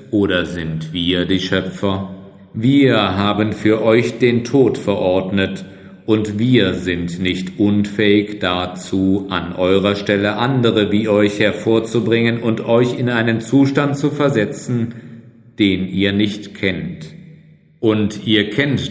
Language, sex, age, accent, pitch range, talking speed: German, male, 50-69, German, 95-120 Hz, 125 wpm